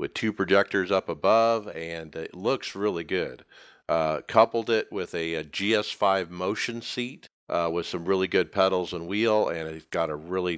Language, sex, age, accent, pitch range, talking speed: English, male, 50-69, American, 85-115 Hz, 180 wpm